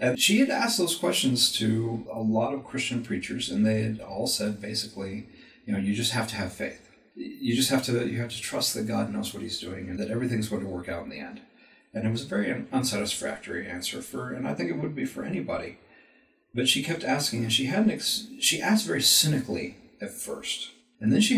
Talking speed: 235 wpm